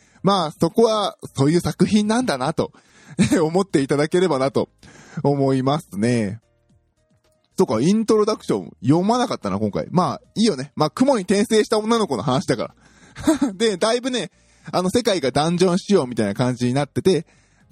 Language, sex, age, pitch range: Japanese, male, 20-39, 125-195 Hz